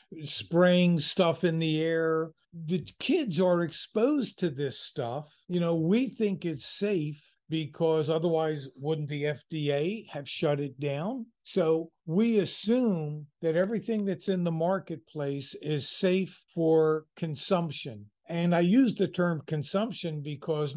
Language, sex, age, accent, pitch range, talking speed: English, male, 50-69, American, 150-185 Hz, 135 wpm